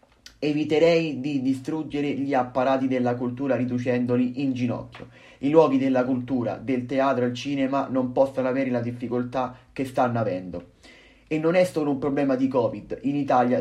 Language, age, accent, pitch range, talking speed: Italian, 30-49, native, 125-145 Hz, 165 wpm